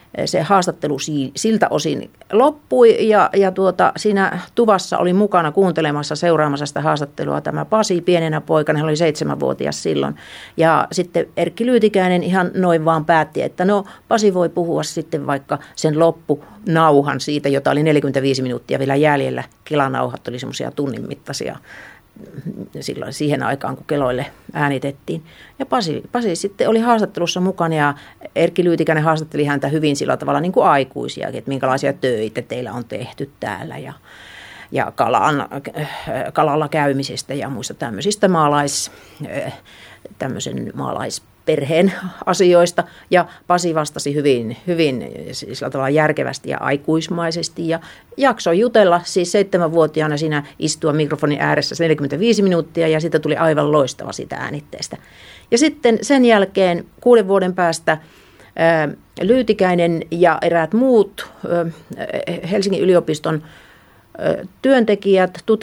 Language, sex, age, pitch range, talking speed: Finnish, female, 50-69, 150-195 Hz, 125 wpm